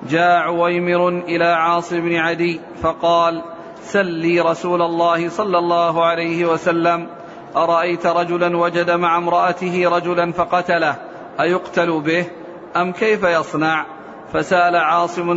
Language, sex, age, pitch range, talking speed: Arabic, male, 40-59, 170-175 Hz, 110 wpm